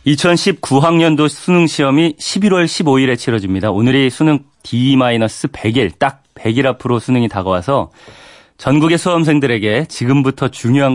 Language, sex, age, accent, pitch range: Korean, male, 30-49, native, 110-155 Hz